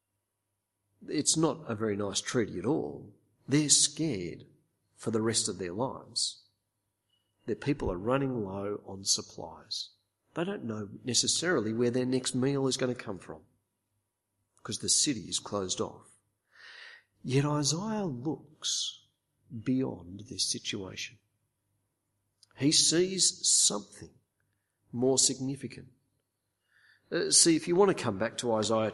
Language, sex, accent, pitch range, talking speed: English, male, Australian, 105-140 Hz, 130 wpm